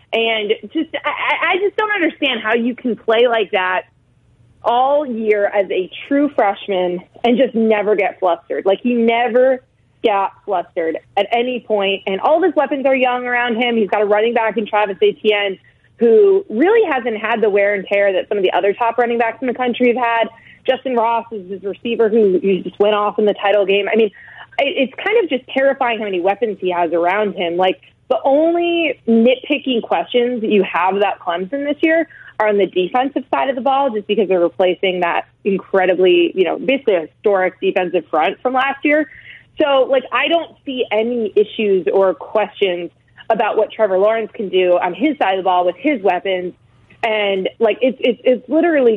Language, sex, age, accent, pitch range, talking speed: English, female, 30-49, American, 185-245 Hz, 200 wpm